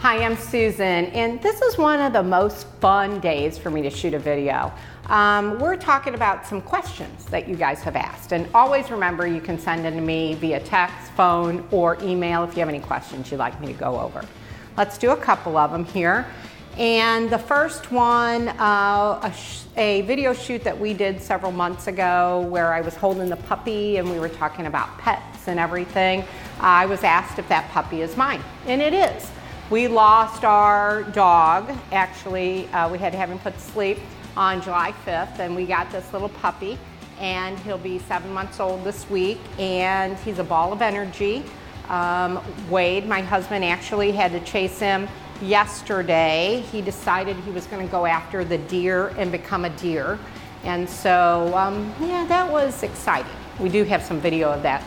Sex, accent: female, American